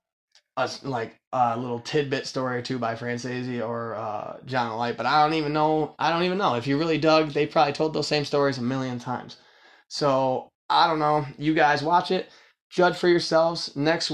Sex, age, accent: male, 20-39, American